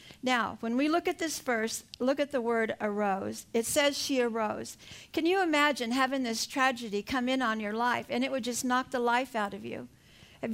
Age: 50-69